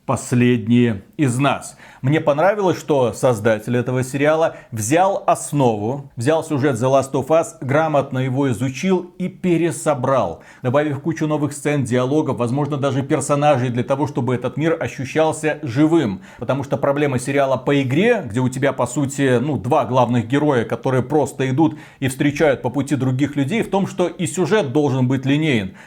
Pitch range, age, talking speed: 130-165 Hz, 40-59, 160 wpm